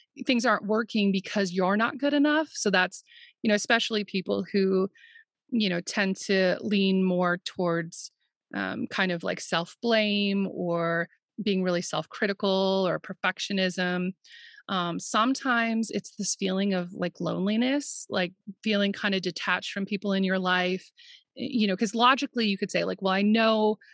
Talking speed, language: 160 wpm, English